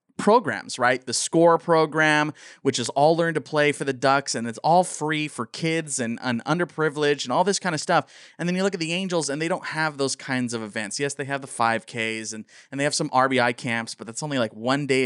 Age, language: 30-49, English